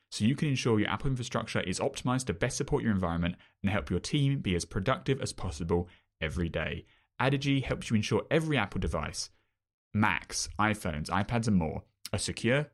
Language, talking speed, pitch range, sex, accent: English, 185 wpm, 85-115 Hz, male, British